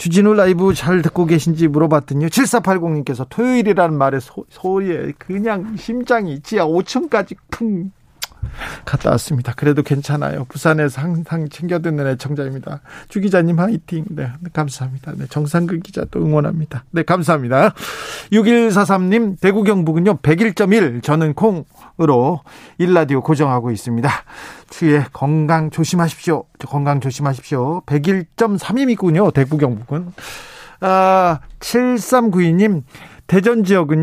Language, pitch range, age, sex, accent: Korean, 145-190 Hz, 40-59, male, native